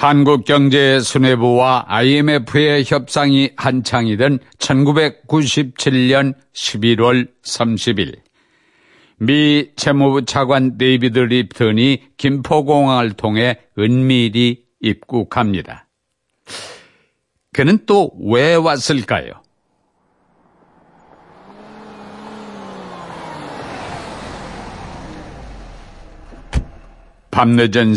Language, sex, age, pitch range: Korean, male, 60-79, 120-145 Hz